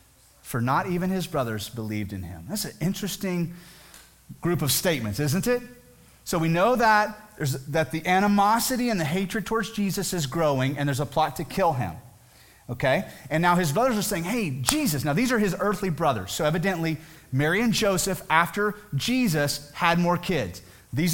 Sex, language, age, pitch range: male, English, 30-49, 155-225 Hz